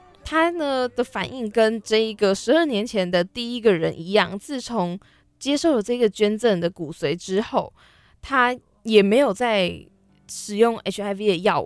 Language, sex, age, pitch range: Chinese, female, 20-39, 190-240 Hz